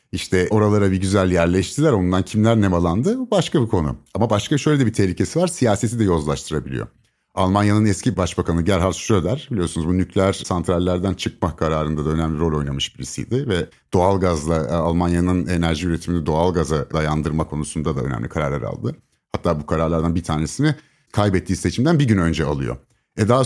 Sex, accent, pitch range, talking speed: male, native, 85-120 Hz, 165 wpm